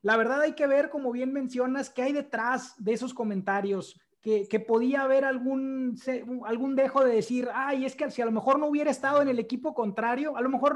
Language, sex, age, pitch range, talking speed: Spanish, male, 30-49, 210-255 Hz, 225 wpm